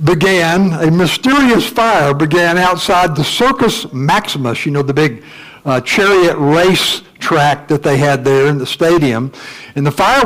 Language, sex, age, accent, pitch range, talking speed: English, male, 60-79, American, 155-210 Hz, 160 wpm